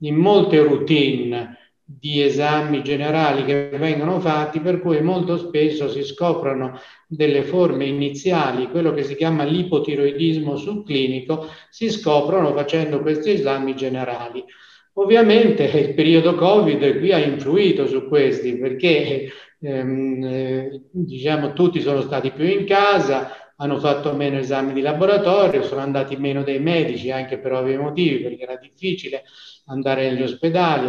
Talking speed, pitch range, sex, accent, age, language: 135 wpm, 140-175 Hz, male, native, 50-69, Italian